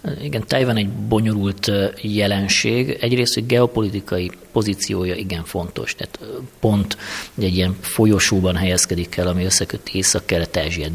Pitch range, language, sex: 85-105 Hz, Hungarian, male